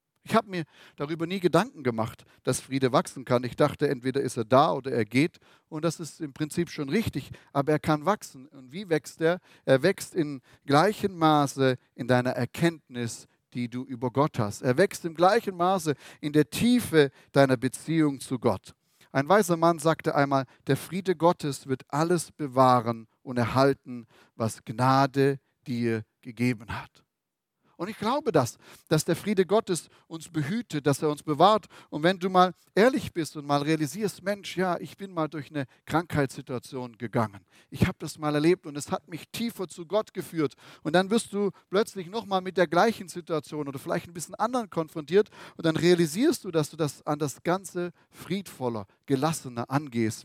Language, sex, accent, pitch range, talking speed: German, male, German, 130-175 Hz, 180 wpm